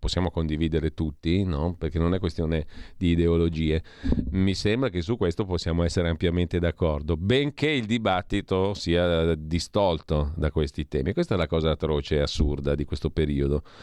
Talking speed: 160 wpm